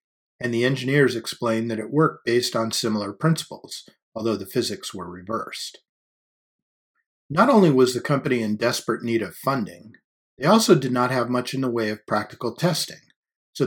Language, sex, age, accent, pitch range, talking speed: English, male, 40-59, American, 110-145 Hz, 170 wpm